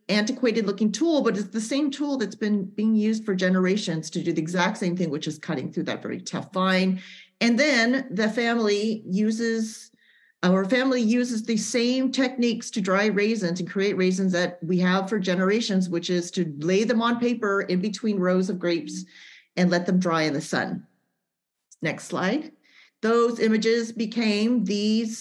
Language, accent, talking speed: English, American, 180 wpm